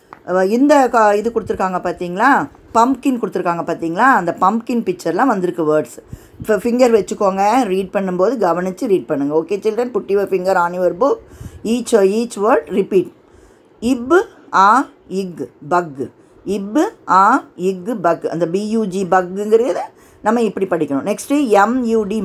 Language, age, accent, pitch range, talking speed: Tamil, 20-39, native, 185-265 Hz, 125 wpm